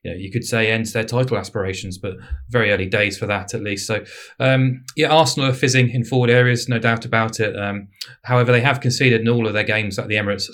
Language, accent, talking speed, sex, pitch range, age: English, British, 240 wpm, male, 100-115 Hz, 20-39